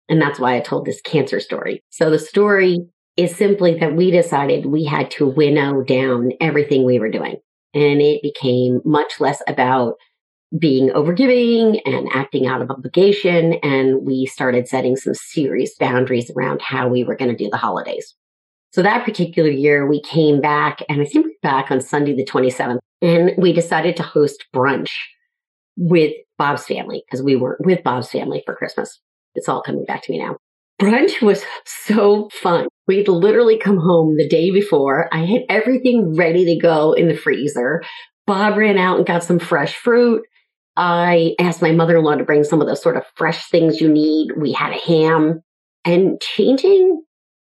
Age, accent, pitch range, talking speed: 40-59, American, 145-200 Hz, 180 wpm